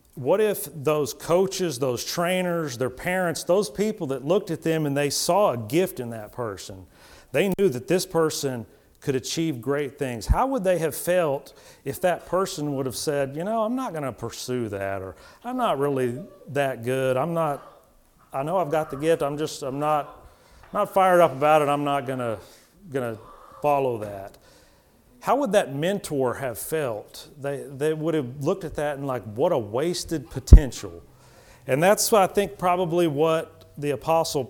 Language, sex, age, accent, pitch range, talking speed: English, male, 40-59, American, 130-170 Hz, 185 wpm